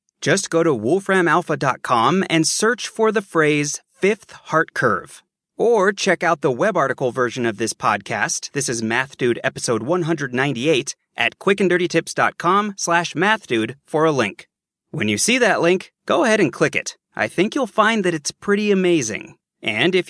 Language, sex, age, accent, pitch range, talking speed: English, male, 30-49, American, 135-195 Hz, 165 wpm